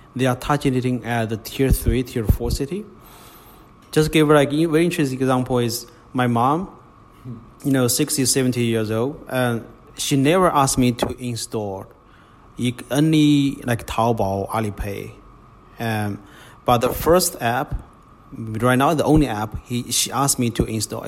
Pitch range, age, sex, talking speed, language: 115-140 Hz, 30-49, male, 150 wpm, English